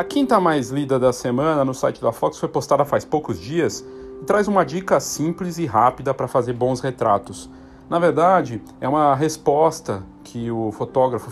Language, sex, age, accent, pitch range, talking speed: Portuguese, male, 40-59, Brazilian, 120-155 Hz, 180 wpm